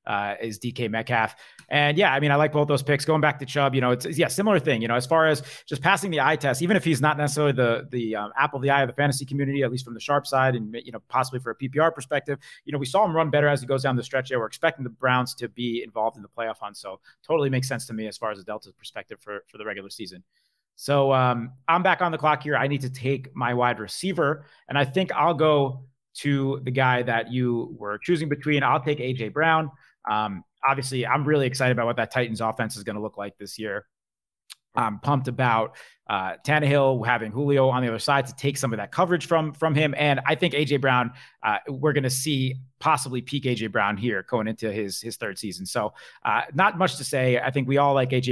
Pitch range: 115-145 Hz